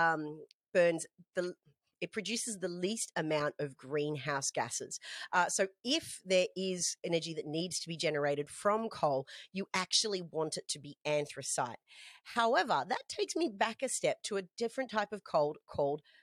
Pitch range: 150-200 Hz